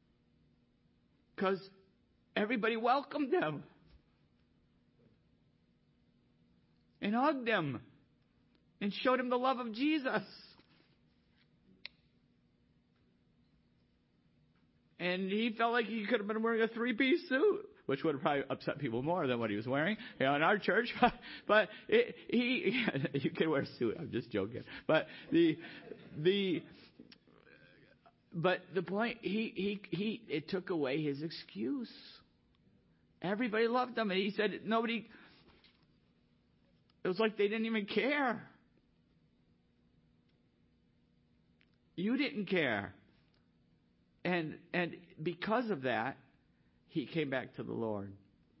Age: 50-69